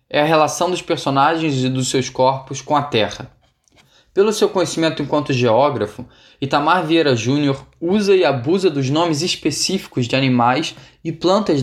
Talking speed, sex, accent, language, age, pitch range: 155 wpm, male, Brazilian, Portuguese, 10-29, 130-170 Hz